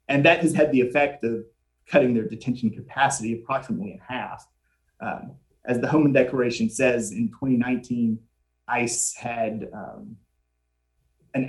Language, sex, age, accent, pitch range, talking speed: English, male, 30-49, American, 115-150 Hz, 135 wpm